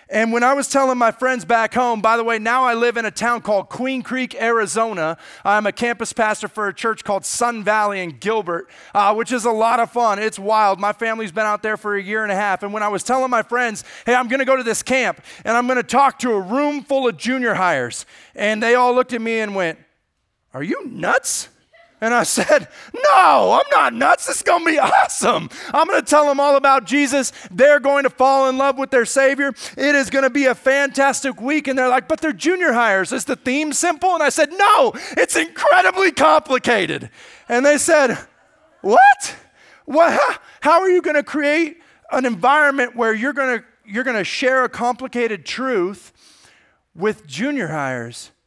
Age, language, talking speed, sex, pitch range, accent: 30-49, English, 215 wpm, male, 220-275 Hz, American